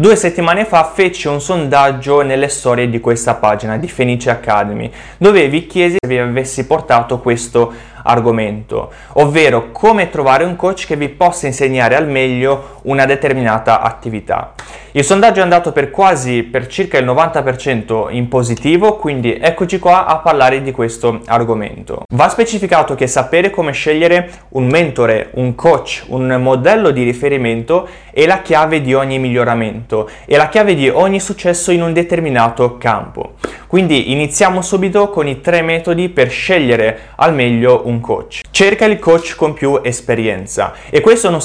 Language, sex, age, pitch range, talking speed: Italian, male, 20-39, 125-175 Hz, 160 wpm